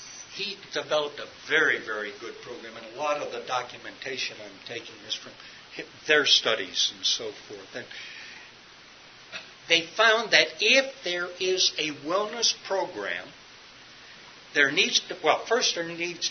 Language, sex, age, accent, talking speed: English, male, 60-79, American, 145 wpm